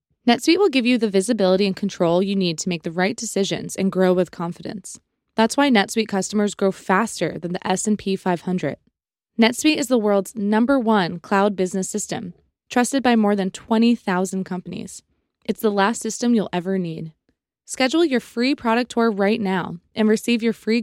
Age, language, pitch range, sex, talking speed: 20-39, English, 180-225 Hz, female, 180 wpm